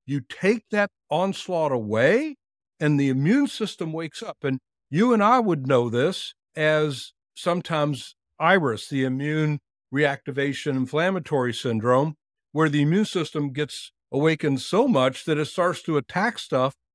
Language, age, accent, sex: English, 60-79, American, male